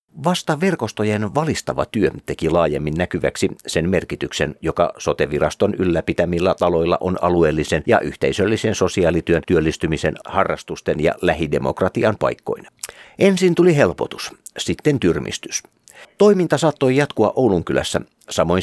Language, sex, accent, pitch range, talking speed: Finnish, male, native, 85-115 Hz, 105 wpm